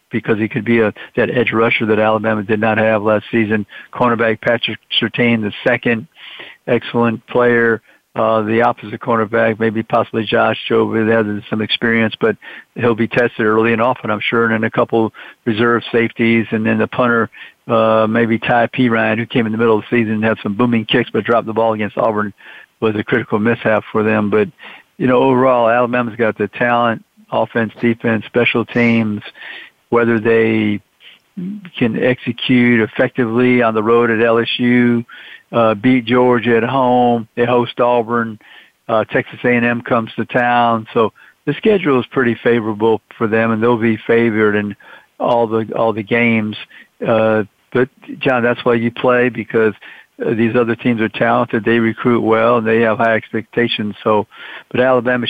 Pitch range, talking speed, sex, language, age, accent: 110-120 Hz, 175 wpm, male, English, 50-69, American